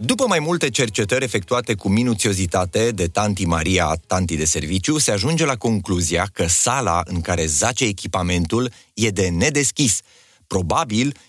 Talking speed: 145 wpm